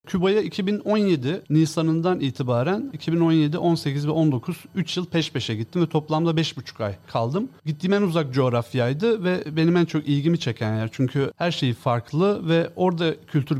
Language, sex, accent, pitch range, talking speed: Turkish, male, native, 130-175 Hz, 160 wpm